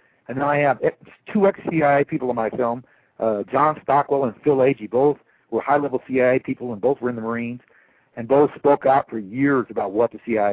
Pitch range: 110-135 Hz